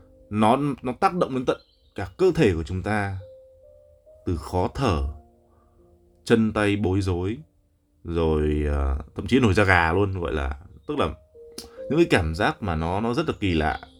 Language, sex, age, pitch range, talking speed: Vietnamese, male, 20-39, 80-115 Hz, 180 wpm